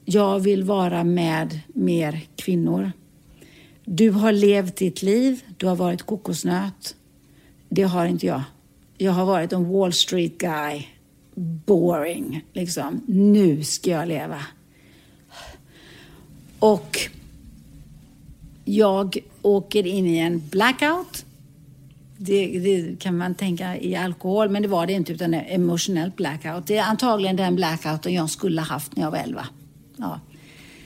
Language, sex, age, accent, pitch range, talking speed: Swedish, female, 60-79, native, 160-195 Hz, 130 wpm